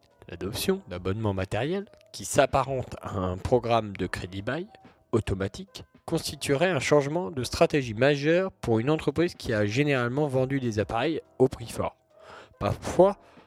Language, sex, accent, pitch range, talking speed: French, male, French, 105-145 Hz, 140 wpm